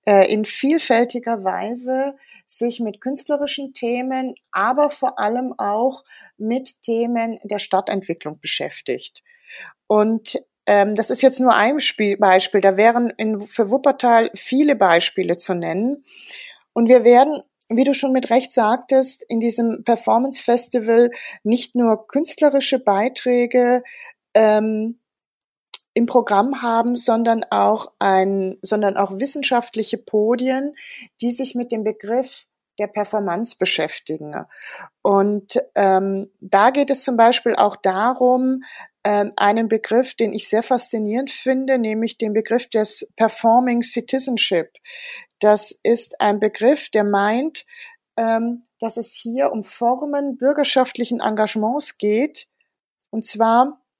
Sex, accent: female, German